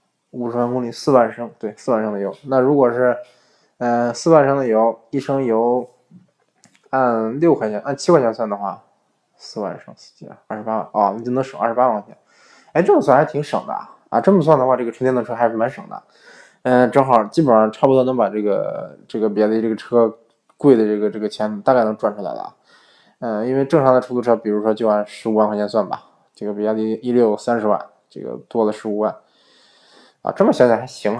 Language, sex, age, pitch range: Chinese, male, 20-39, 105-125 Hz